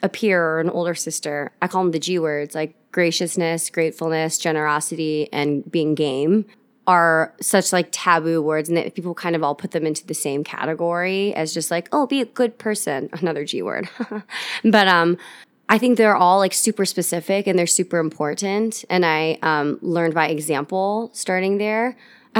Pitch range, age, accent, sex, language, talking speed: 165-215 Hz, 20-39, American, female, English, 185 wpm